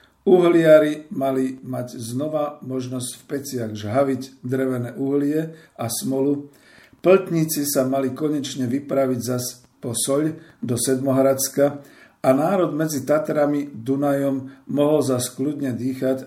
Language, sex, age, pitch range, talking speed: Slovak, male, 50-69, 125-140 Hz, 115 wpm